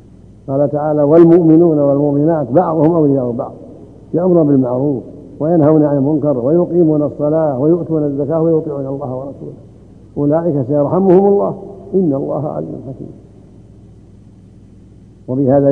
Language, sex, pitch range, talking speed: Arabic, male, 130-160 Hz, 105 wpm